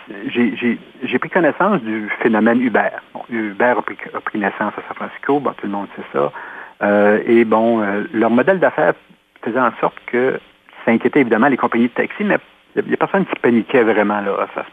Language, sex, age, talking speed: French, male, 50-69, 215 wpm